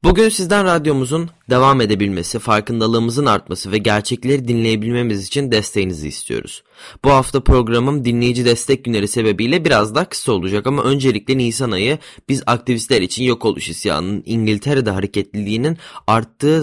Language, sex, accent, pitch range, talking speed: Turkish, male, native, 105-135 Hz, 135 wpm